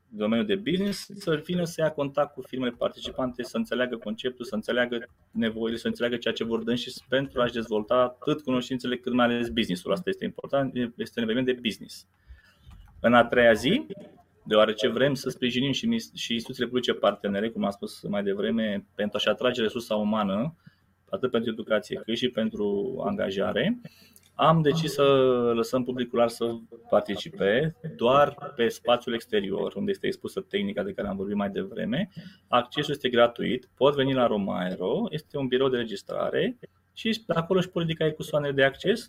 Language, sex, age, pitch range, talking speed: Romanian, male, 20-39, 115-155 Hz, 175 wpm